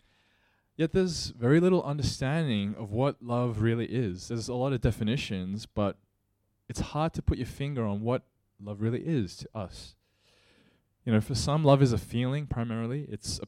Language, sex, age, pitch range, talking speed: English, male, 20-39, 100-130 Hz, 180 wpm